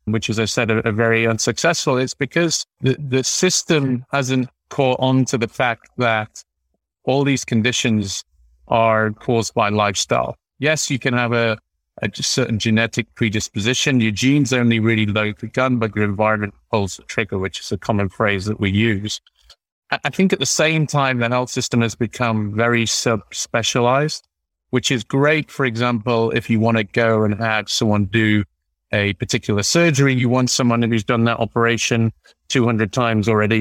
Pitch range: 105-125 Hz